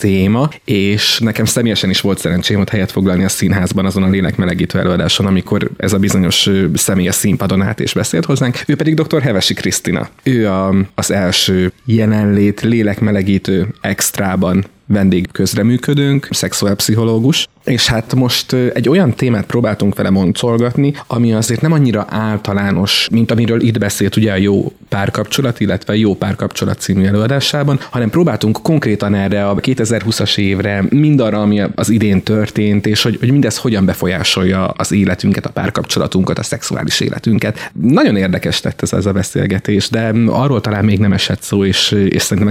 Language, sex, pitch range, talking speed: Hungarian, male, 100-120 Hz, 155 wpm